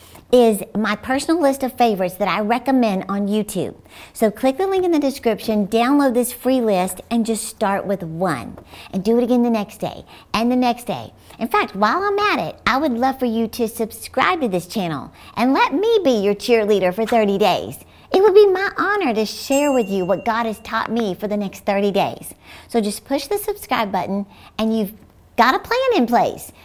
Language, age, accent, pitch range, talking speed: English, 50-69, American, 190-245 Hz, 215 wpm